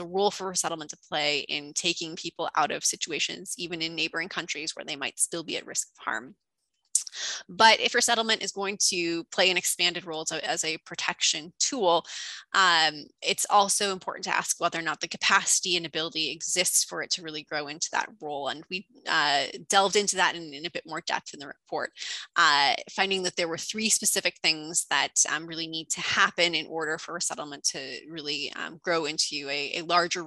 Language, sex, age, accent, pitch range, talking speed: English, female, 20-39, American, 155-185 Hz, 200 wpm